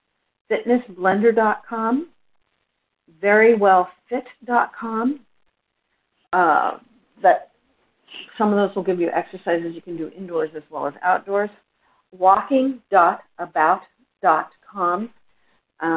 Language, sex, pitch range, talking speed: English, female, 170-200 Hz, 70 wpm